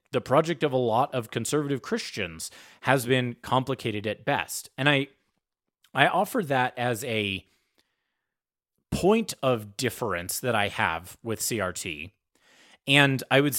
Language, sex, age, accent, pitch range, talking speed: English, male, 30-49, American, 110-140 Hz, 135 wpm